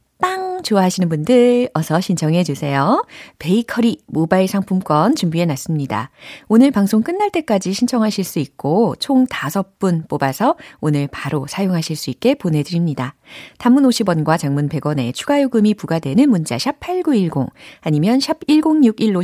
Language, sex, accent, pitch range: Korean, female, native, 150-245 Hz